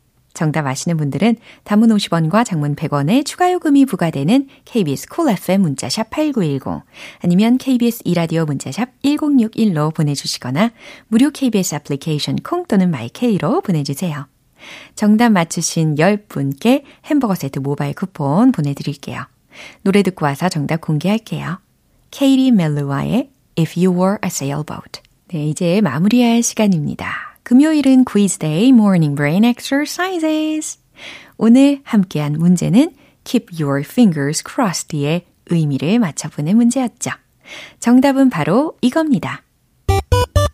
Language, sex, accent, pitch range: Korean, female, native, 155-245 Hz